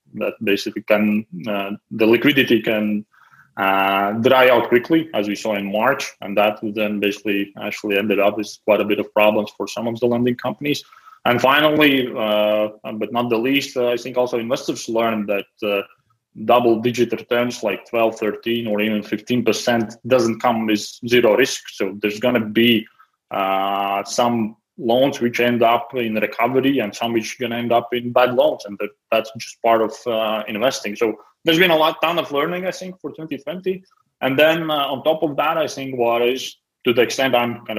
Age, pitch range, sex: 20-39, 105-130 Hz, male